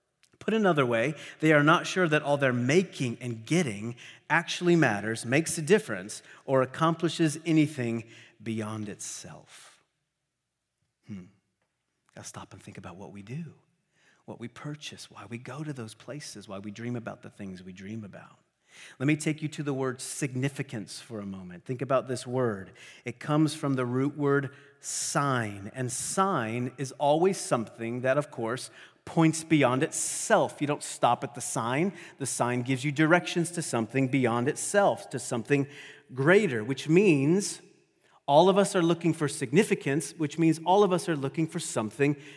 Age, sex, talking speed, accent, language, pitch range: 30-49, male, 170 wpm, American, English, 120-165 Hz